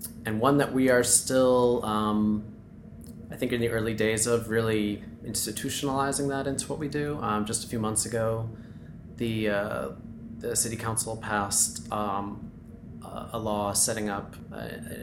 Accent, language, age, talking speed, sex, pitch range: American, English, 20-39, 155 wpm, male, 100-115 Hz